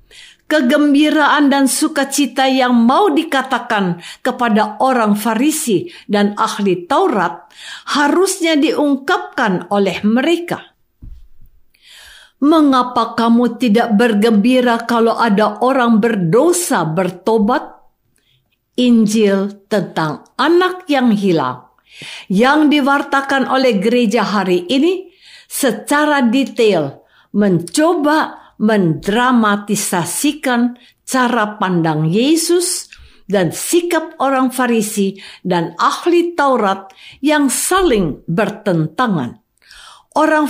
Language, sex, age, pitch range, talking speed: Indonesian, female, 50-69, 205-295 Hz, 80 wpm